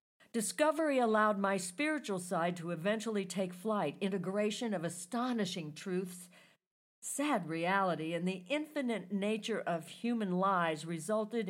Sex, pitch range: female, 175-240 Hz